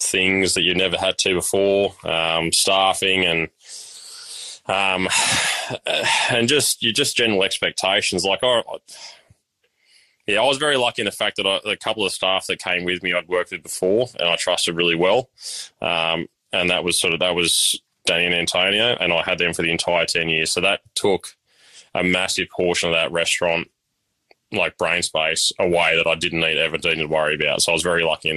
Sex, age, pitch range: male, 20-39, 80-95 Hz